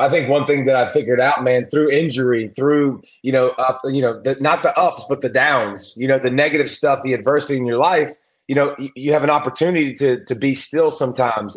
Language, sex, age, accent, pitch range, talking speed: English, male, 30-49, American, 135-155 Hz, 240 wpm